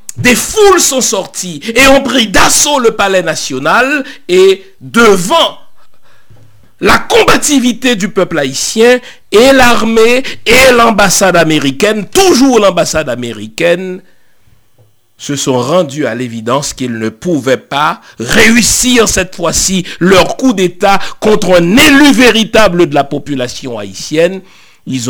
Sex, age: male, 60-79